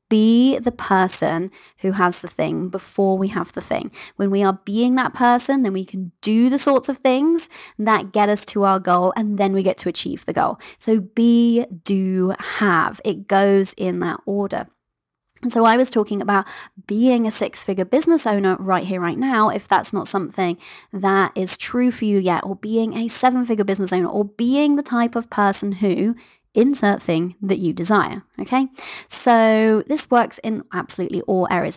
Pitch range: 195-245 Hz